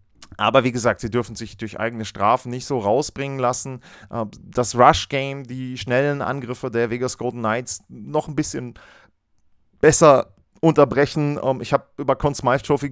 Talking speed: 150 wpm